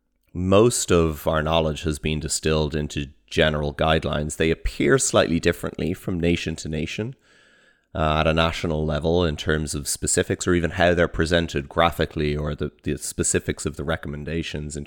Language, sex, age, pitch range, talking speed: English, male, 30-49, 75-90 Hz, 165 wpm